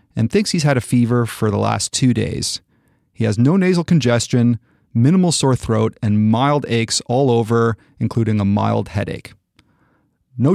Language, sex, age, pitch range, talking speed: English, male, 30-49, 110-140 Hz, 165 wpm